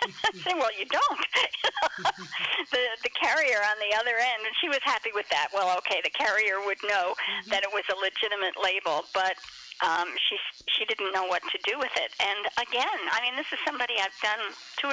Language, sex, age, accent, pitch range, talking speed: English, female, 50-69, American, 210-300 Hz, 205 wpm